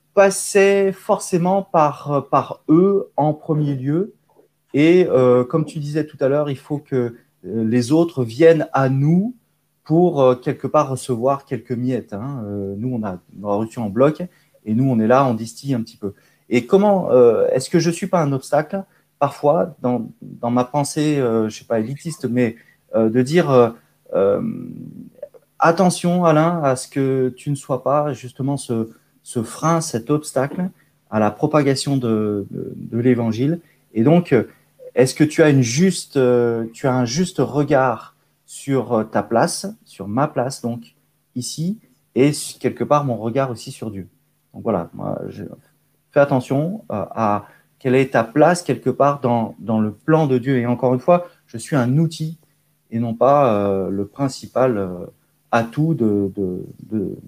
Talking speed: 175 wpm